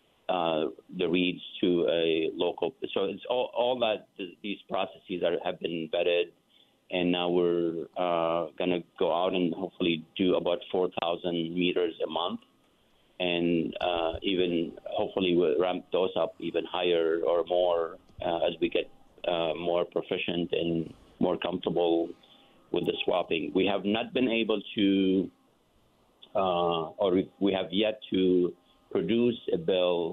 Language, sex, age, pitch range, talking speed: English, male, 50-69, 85-95 Hz, 145 wpm